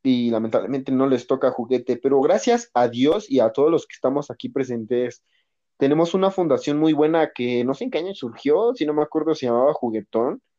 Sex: male